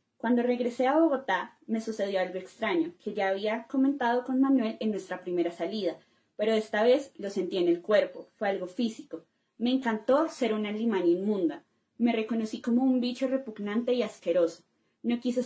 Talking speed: 175 wpm